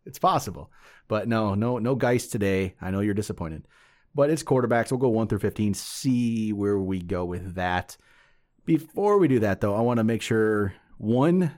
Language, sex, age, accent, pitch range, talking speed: English, male, 30-49, American, 95-120 Hz, 190 wpm